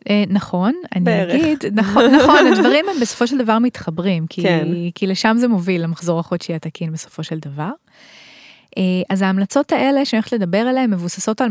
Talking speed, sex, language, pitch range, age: 150 wpm, female, English, 180-235 Hz, 20-39